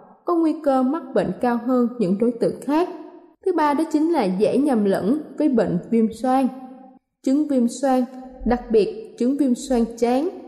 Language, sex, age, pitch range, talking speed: Vietnamese, female, 20-39, 215-270 Hz, 185 wpm